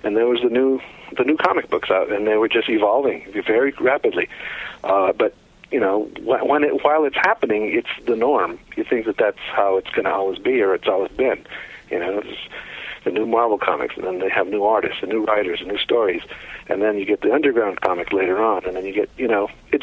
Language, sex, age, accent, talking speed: English, male, 50-69, American, 235 wpm